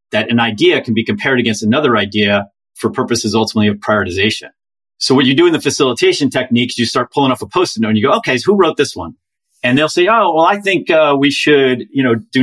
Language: English